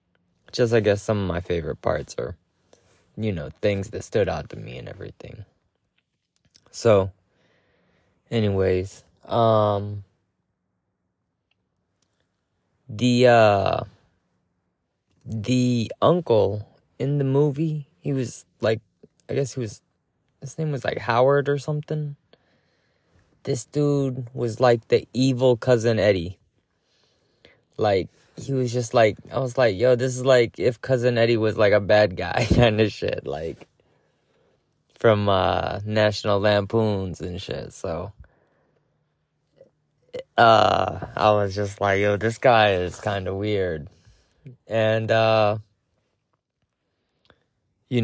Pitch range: 105-130 Hz